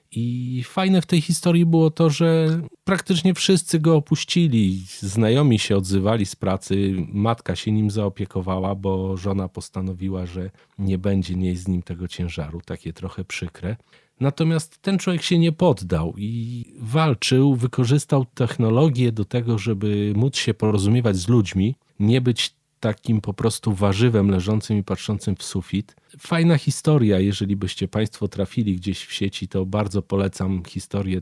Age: 40-59